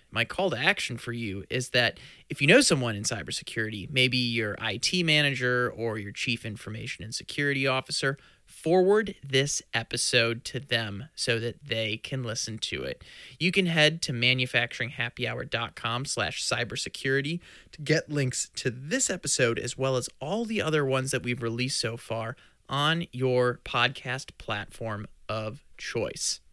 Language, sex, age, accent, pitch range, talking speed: English, male, 30-49, American, 120-150 Hz, 150 wpm